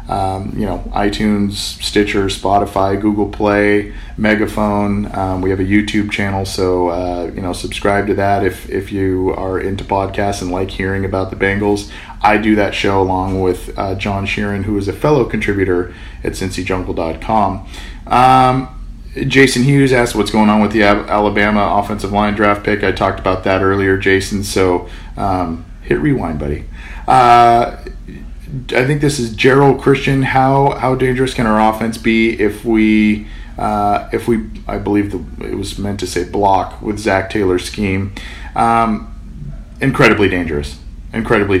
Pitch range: 95-110 Hz